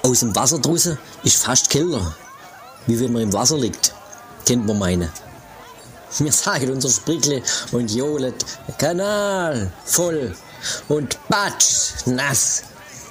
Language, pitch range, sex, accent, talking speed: German, 110-140 Hz, male, German, 120 wpm